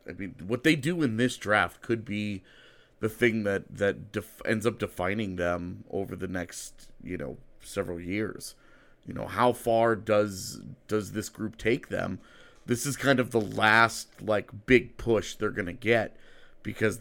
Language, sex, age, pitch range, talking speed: English, male, 30-49, 100-125 Hz, 175 wpm